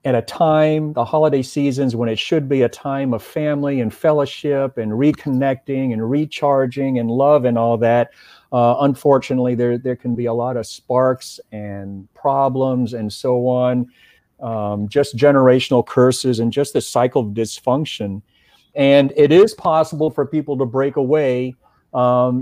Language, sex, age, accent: English, male, 40-59, American